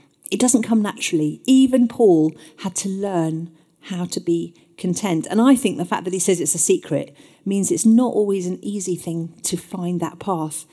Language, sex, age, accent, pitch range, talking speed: English, female, 40-59, British, 170-225 Hz, 195 wpm